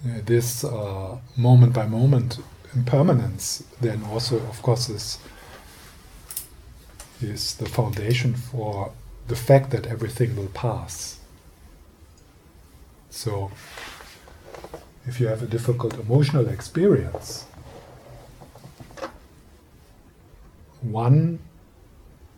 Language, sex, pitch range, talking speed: English, male, 80-125 Hz, 80 wpm